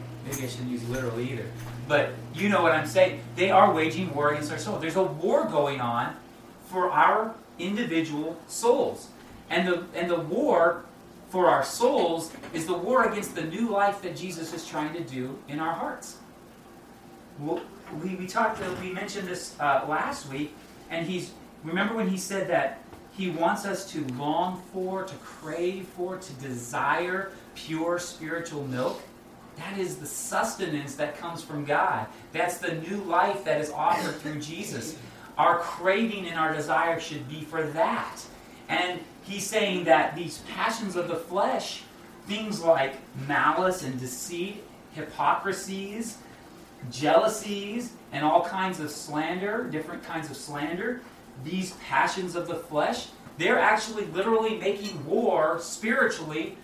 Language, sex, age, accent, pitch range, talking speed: English, male, 30-49, American, 150-190 Hz, 155 wpm